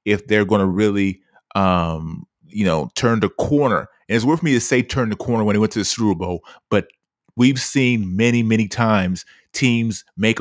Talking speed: 200 wpm